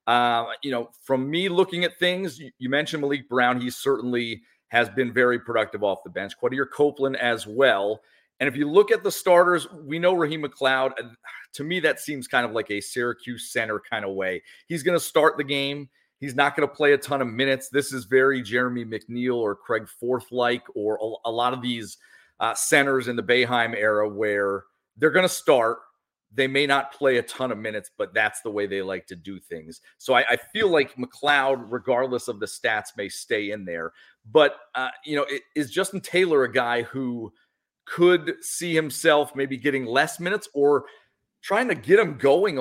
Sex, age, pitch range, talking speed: male, 40-59, 120-155 Hz, 205 wpm